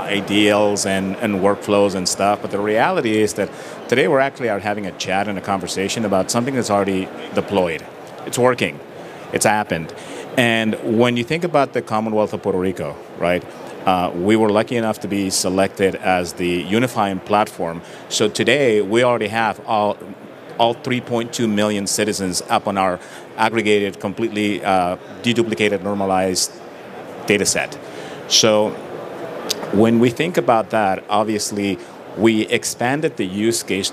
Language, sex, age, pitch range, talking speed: English, male, 30-49, 95-110 Hz, 150 wpm